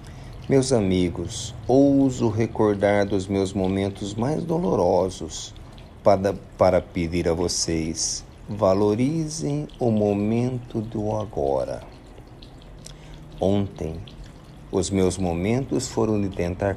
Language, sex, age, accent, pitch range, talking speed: Portuguese, male, 50-69, Brazilian, 95-125 Hz, 95 wpm